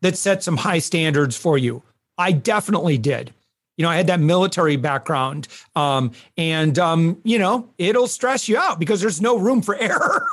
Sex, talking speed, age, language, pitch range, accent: male, 185 wpm, 40-59, English, 155-200 Hz, American